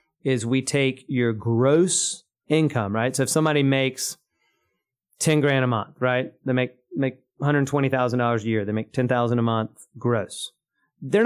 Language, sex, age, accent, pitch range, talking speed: English, male, 30-49, American, 120-140 Hz, 180 wpm